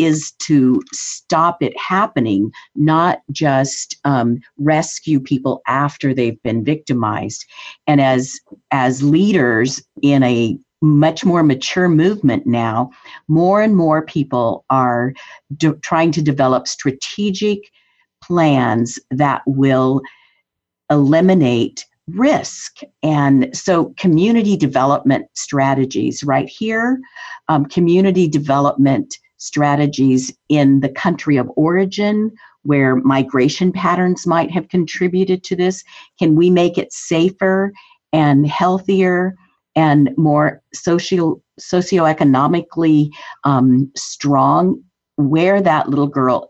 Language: English